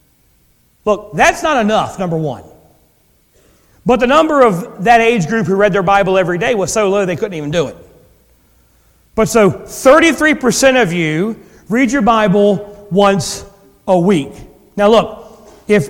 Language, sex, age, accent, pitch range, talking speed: English, male, 40-59, American, 165-225 Hz, 155 wpm